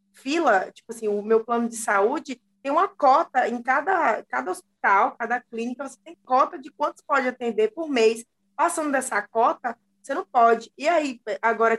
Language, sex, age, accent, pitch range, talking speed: Portuguese, female, 20-39, Brazilian, 225-275 Hz, 180 wpm